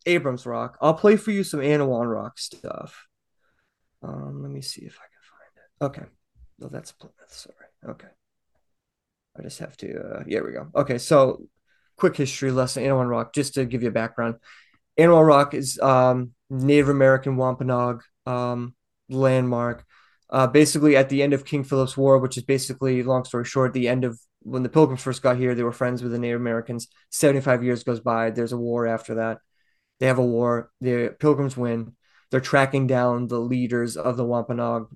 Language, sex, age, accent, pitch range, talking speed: English, male, 20-39, American, 120-135 Hz, 190 wpm